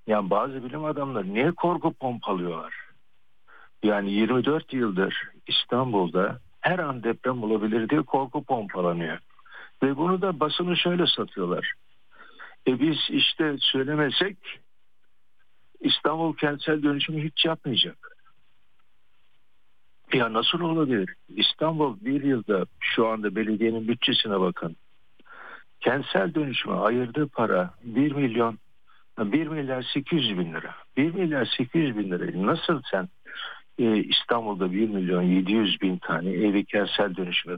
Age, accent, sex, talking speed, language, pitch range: 60-79, native, male, 115 wpm, Turkish, 110-155 Hz